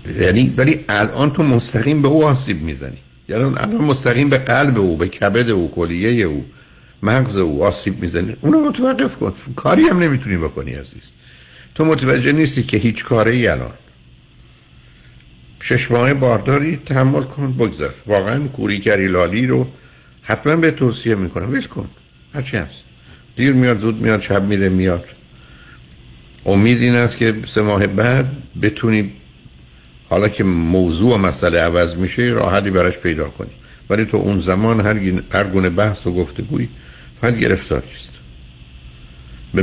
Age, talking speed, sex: 60-79, 140 wpm, male